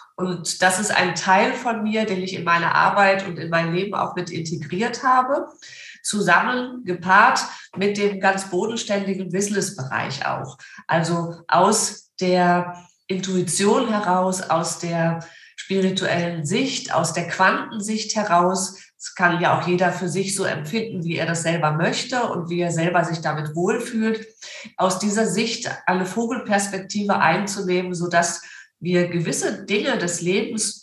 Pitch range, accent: 175-215 Hz, German